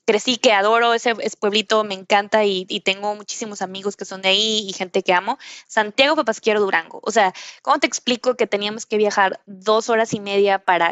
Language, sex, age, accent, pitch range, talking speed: Spanish, female, 20-39, Mexican, 200-250 Hz, 210 wpm